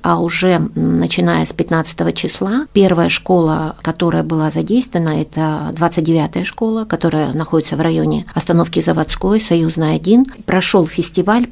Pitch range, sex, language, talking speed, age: 160-185 Hz, female, Russian, 125 wpm, 40-59